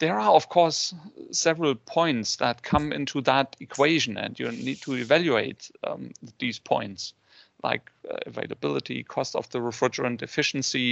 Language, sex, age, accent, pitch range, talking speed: English, male, 40-59, German, 130-175 Hz, 150 wpm